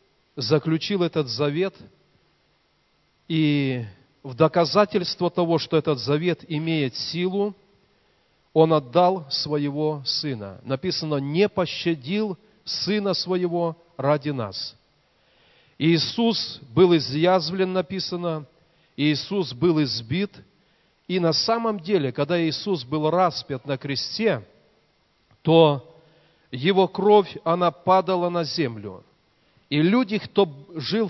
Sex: male